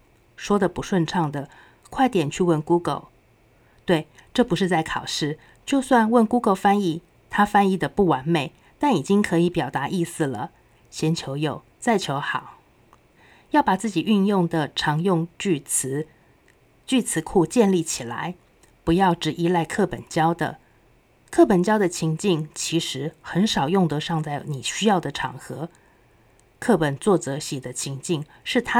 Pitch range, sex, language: 150-200 Hz, female, Chinese